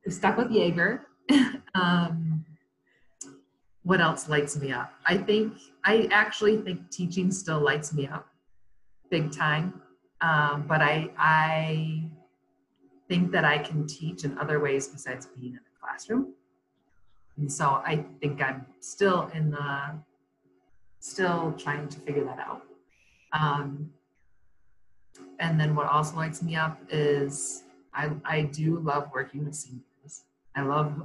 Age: 30-49